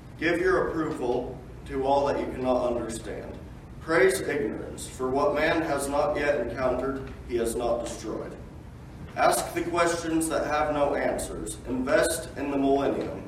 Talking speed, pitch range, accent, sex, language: 150 wpm, 125-155 Hz, American, male, English